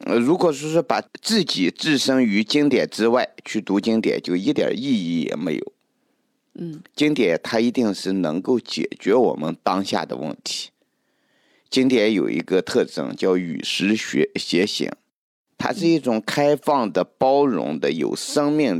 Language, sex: Chinese, male